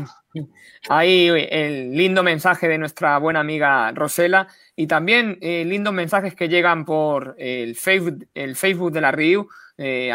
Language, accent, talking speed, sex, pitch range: Spanish, Spanish, 140 wpm, male, 140-175 Hz